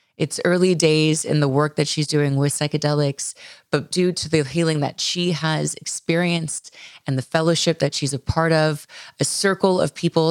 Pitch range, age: 145-180 Hz, 20-39